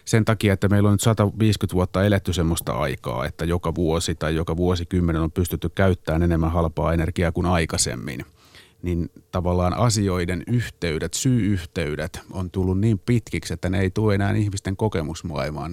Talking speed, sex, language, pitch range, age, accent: 155 wpm, male, Finnish, 85-100 Hz, 30-49, native